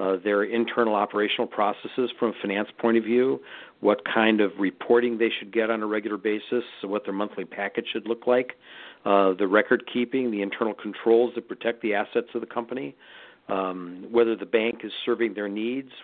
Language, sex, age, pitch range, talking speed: English, male, 50-69, 100-115 Hz, 185 wpm